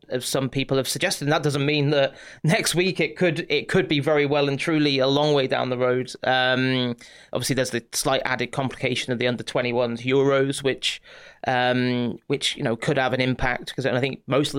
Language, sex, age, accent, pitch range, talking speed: English, male, 30-49, British, 125-140 Hz, 220 wpm